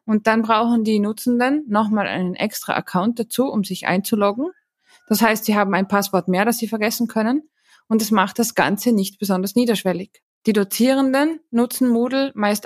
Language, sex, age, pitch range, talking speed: German, female, 20-39, 195-240 Hz, 175 wpm